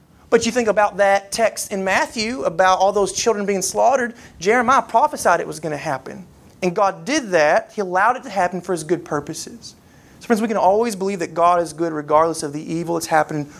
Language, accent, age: English, American, 30-49